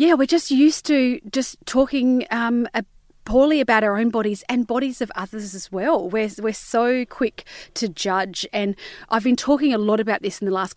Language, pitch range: English, 195-265 Hz